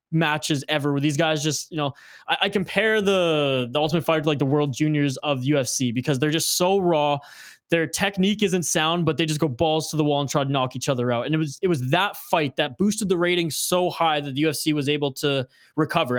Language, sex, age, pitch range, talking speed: English, male, 20-39, 140-170 Hz, 245 wpm